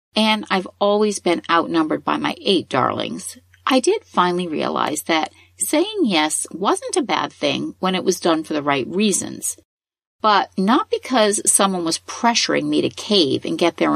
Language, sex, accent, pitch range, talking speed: English, female, American, 165-240 Hz, 170 wpm